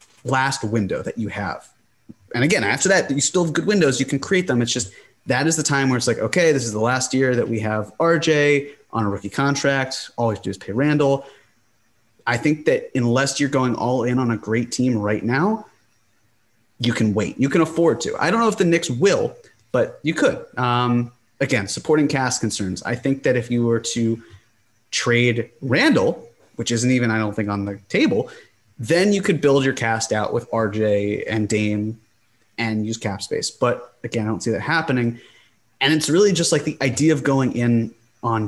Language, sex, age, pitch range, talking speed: English, male, 30-49, 115-145 Hz, 205 wpm